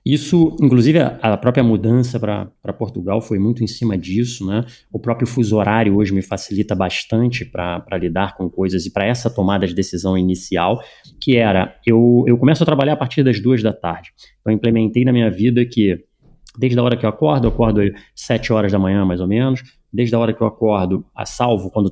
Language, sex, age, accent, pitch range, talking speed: Portuguese, male, 30-49, Brazilian, 100-125 Hz, 210 wpm